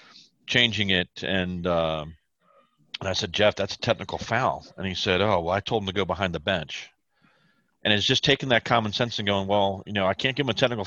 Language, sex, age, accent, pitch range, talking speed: English, male, 40-59, American, 90-110 Hz, 235 wpm